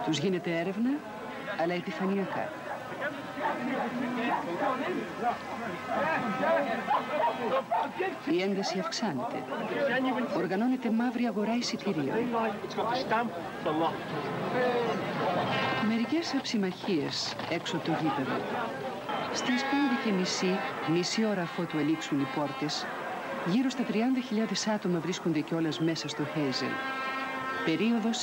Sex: female